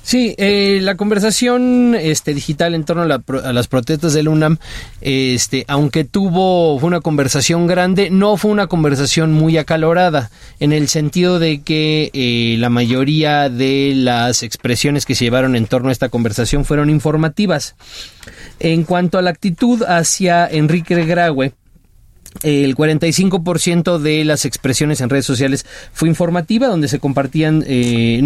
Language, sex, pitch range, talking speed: Spanish, male, 130-175 Hz, 150 wpm